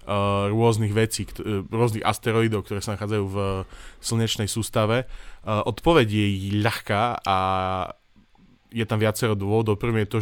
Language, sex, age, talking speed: Slovak, male, 20-39, 125 wpm